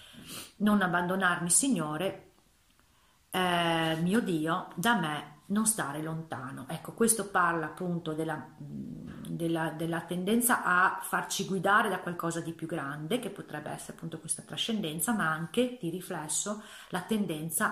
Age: 40-59